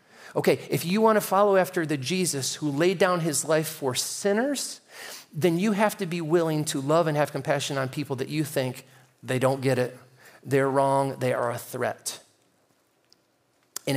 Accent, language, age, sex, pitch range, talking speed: American, English, 40-59, male, 130-165 Hz, 185 wpm